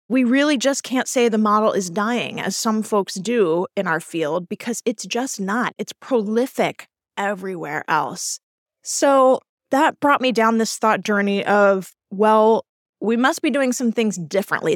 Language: English